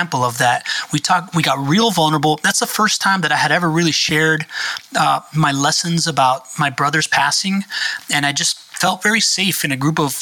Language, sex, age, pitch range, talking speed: English, male, 30-49, 150-175 Hz, 205 wpm